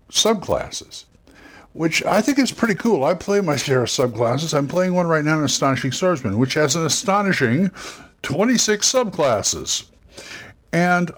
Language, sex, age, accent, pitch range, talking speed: English, male, 60-79, American, 105-155 Hz, 150 wpm